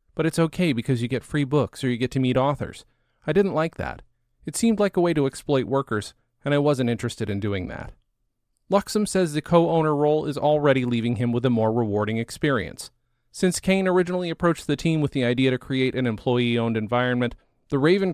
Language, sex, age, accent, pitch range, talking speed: English, male, 30-49, American, 115-150 Hz, 210 wpm